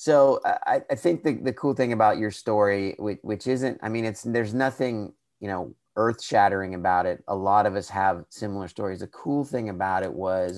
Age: 30-49